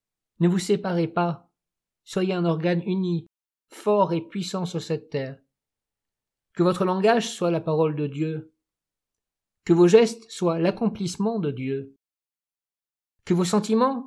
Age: 50-69